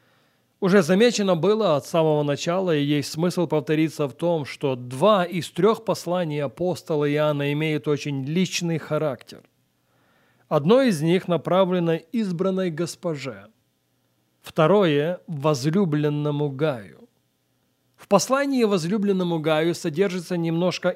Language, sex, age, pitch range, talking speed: Russian, male, 30-49, 150-185 Hz, 110 wpm